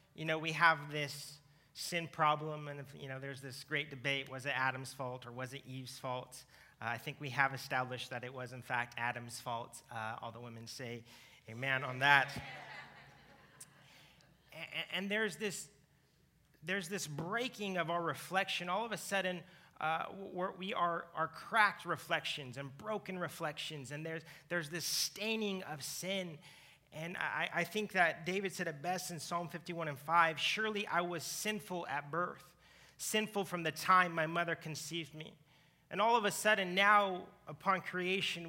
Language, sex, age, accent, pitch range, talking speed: English, male, 30-49, American, 145-180 Hz, 175 wpm